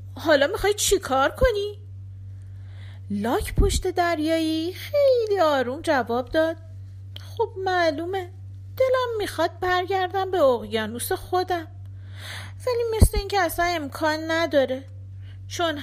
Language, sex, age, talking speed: Persian, female, 40-59, 100 wpm